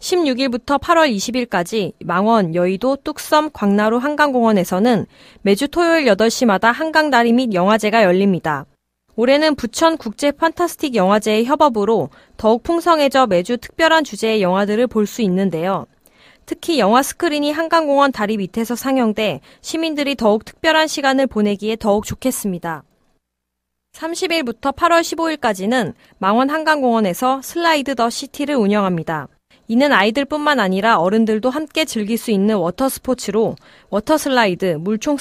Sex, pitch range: female, 205-290 Hz